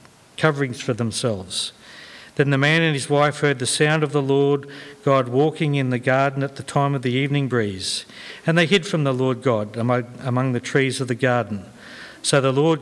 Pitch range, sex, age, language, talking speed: 130-160 Hz, male, 50-69, English, 200 wpm